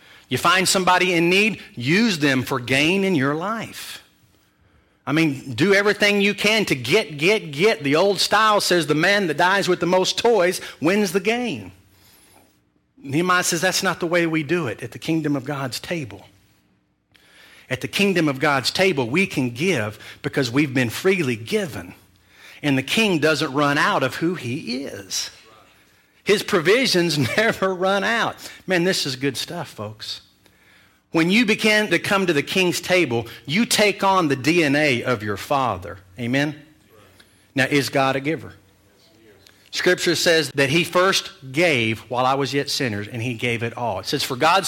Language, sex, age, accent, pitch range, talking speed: English, male, 50-69, American, 125-185 Hz, 175 wpm